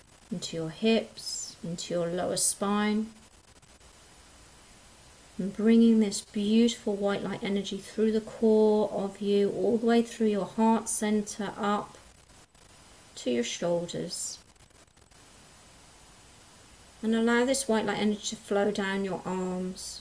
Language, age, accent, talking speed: English, 30-49, British, 125 wpm